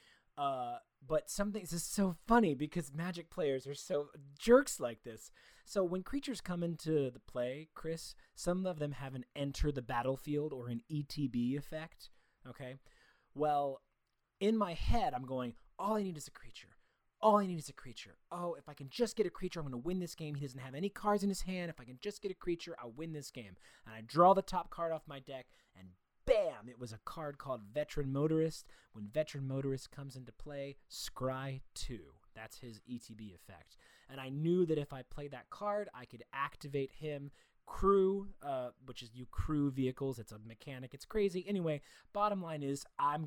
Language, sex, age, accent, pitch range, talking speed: English, male, 30-49, American, 130-175 Hz, 200 wpm